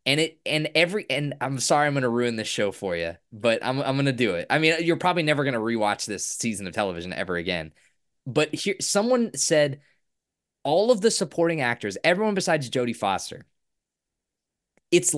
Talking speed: 200 wpm